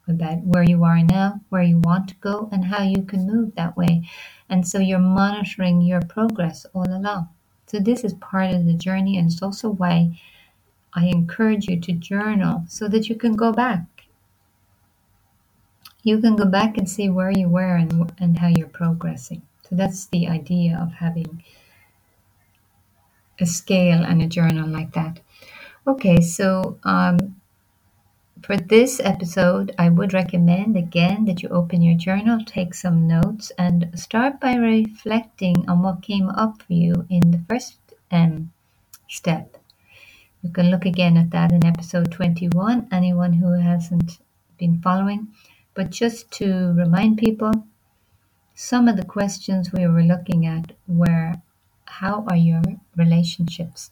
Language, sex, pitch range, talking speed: English, female, 165-195 Hz, 155 wpm